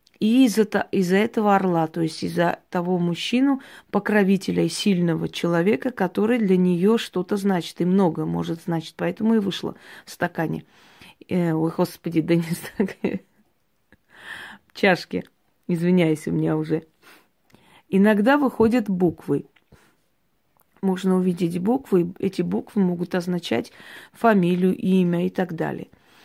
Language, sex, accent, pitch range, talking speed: Russian, female, native, 170-210 Hz, 115 wpm